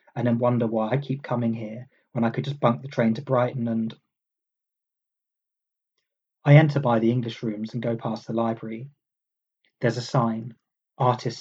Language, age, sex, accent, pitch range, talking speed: English, 30-49, male, British, 115-135 Hz, 175 wpm